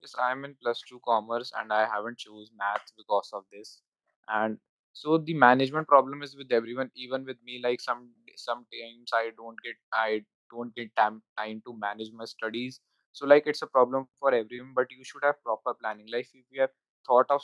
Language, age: English, 20-39